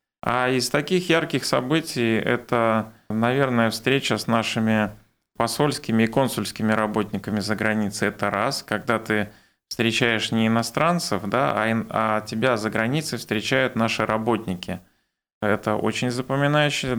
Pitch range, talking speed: 110-130 Hz, 125 wpm